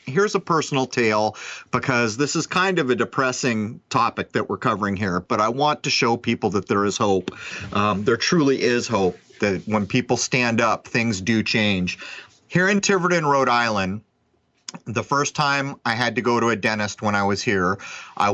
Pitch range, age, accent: 110-145 Hz, 30-49, American